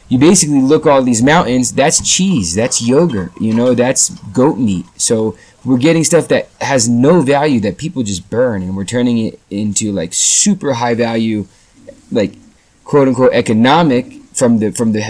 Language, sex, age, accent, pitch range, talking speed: English, male, 20-39, American, 115-145 Hz, 170 wpm